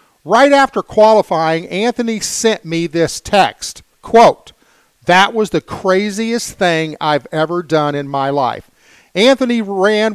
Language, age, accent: English, 50-69, American